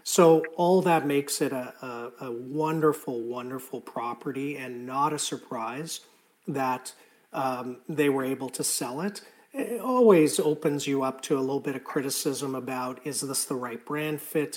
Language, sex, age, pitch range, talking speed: English, male, 40-59, 120-150 Hz, 170 wpm